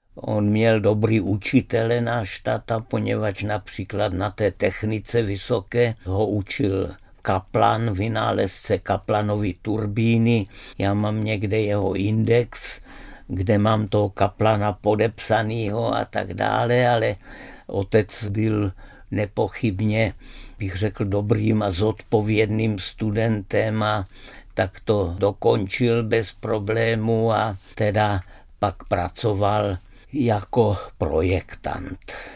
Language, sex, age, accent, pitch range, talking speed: Czech, male, 50-69, native, 100-115 Hz, 100 wpm